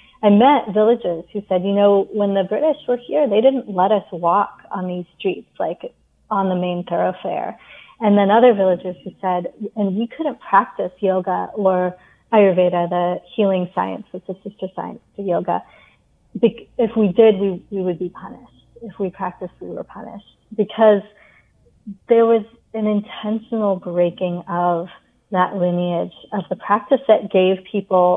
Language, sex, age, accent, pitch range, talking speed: English, female, 30-49, American, 185-215 Hz, 160 wpm